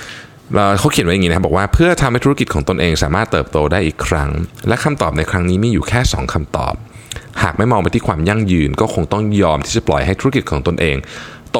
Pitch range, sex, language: 80-115 Hz, male, Thai